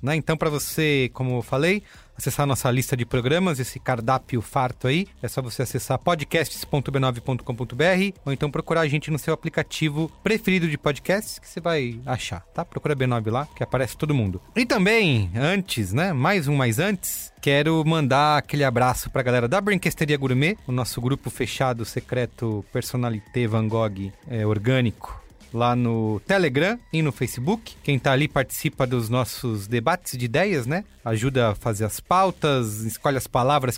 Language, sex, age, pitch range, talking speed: Portuguese, male, 30-49, 125-160 Hz, 175 wpm